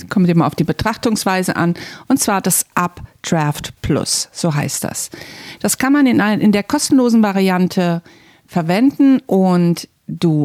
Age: 50-69